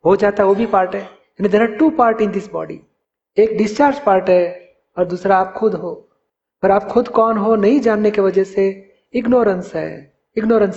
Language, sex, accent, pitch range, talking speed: Hindi, male, native, 175-220 Hz, 195 wpm